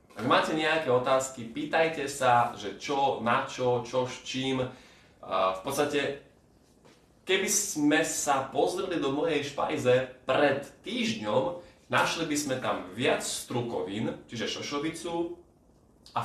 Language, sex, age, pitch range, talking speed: Slovak, male, 20-39, 110-140 Hz, 120 wpm